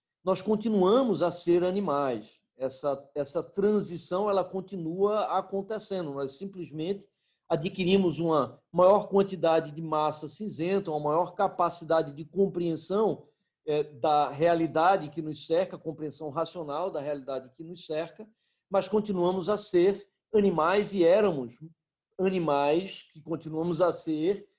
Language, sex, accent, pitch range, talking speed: Portuguese, male, Brazilian, 160-195 Hz, 120 wpm